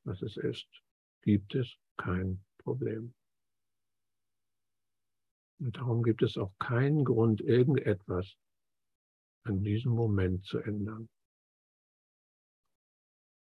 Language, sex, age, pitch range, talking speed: German, male, 60-79, 95-120 Hz, 90 wpm